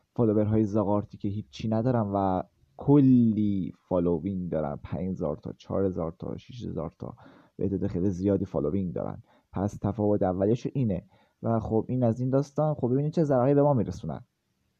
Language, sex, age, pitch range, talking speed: Persian, male, 20-39, 100-120 Hz, 155 wpm